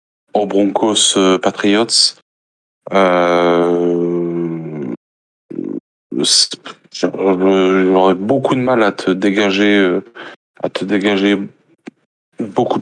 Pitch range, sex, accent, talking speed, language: 95-105 Hz, male, French, 70 wpm, French